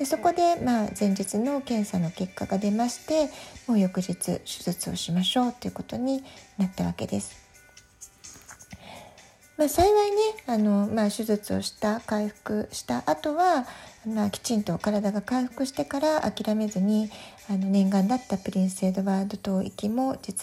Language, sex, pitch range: Japanese, female, 195-265 Hz